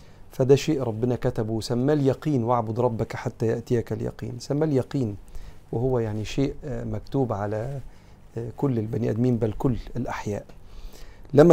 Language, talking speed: Arabic, 130 wpm